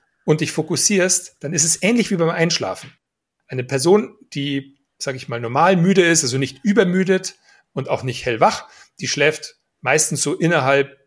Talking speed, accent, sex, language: 170 wpm, German, male, German